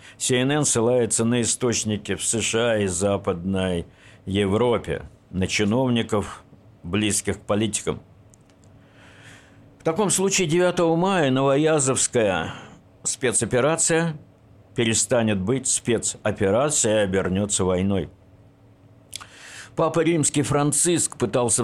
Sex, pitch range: male, 100-130 Hz